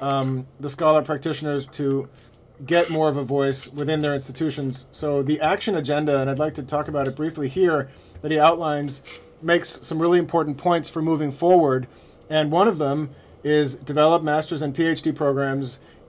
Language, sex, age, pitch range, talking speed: English, male, 40-59, 135-155 Hz, 175 wpm